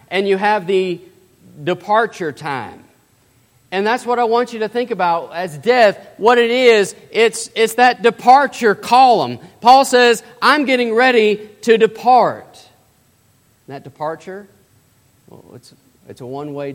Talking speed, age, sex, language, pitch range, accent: 145 wpm, 40-59, male, English, 130-200 Hz, American